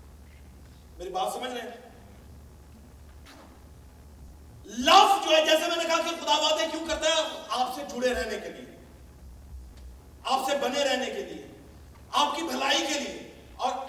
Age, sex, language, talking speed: 40-59, male, Urdu, 125 wpm